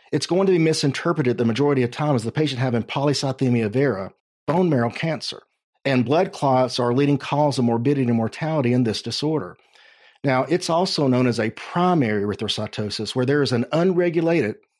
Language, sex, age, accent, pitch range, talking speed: English, male, 50-69, American, 120-155 Hz, 185 wpm